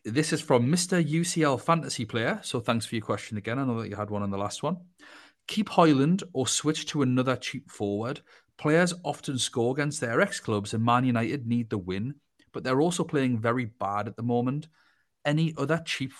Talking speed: 205 wpm